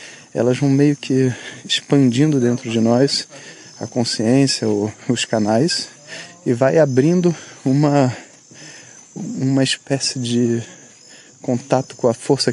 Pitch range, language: 115-140 Hz, Portuguese